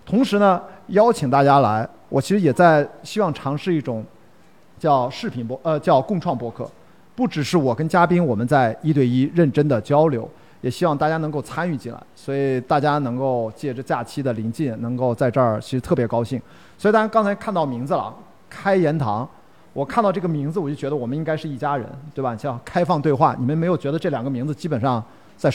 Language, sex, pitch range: Chinese, male, 130-175 Hz